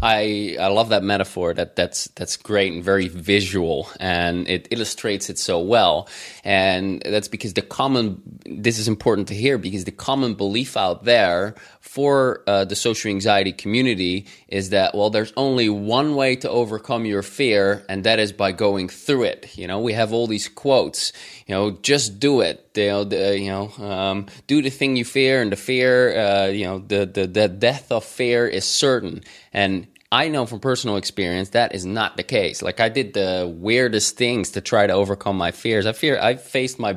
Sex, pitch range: male, 95-115 Hz